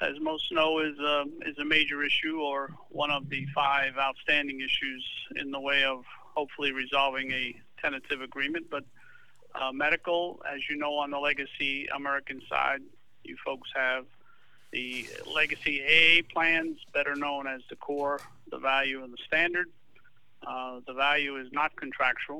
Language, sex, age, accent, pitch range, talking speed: English, male, 40-59, American, 135-155 Hz, 160 wpm